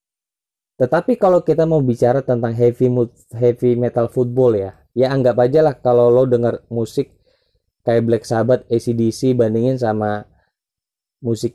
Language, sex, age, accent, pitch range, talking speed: Indonesian, male, 20-39, native, 115-130 Hz, 130 wpm